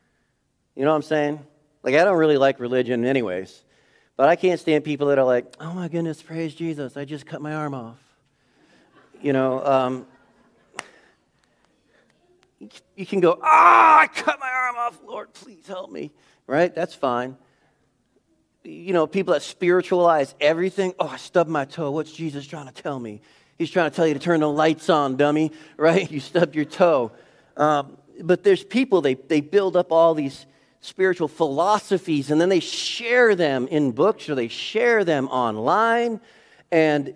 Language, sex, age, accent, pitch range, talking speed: English, male, 40-59, American, 135-185 Hz, 175 wpm